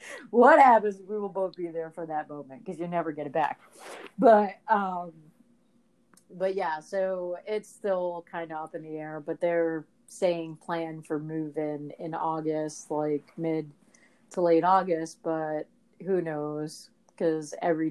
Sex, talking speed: female, 160 wpm